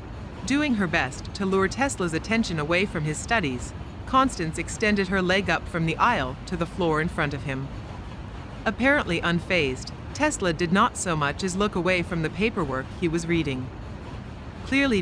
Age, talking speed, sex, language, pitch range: 40-59, 170 wpm, female, English, 130-205 Hz